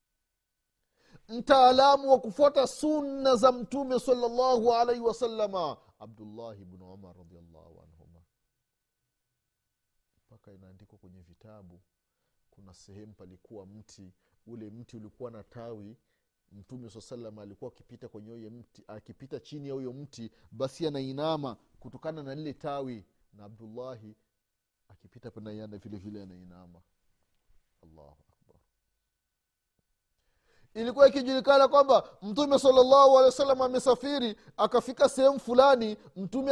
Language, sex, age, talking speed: Swahili, male, 40-59, 105 wpm